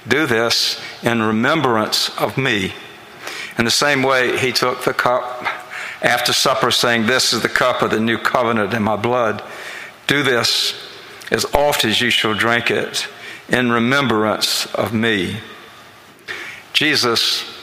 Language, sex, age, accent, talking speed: English, male, 60-79, American, 145 wpm